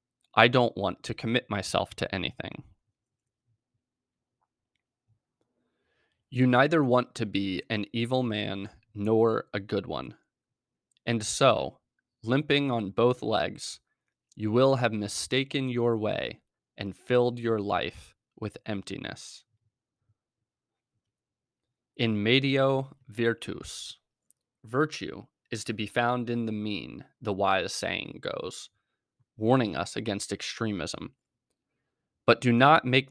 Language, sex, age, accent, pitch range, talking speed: English, male, 20-39, American, 105-125 Hz, 110 wpm